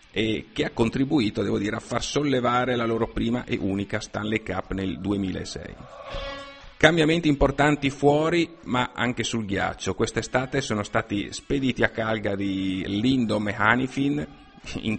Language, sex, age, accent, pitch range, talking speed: Italian, male, 50-69, native, 100-125 Hz, 140 wpm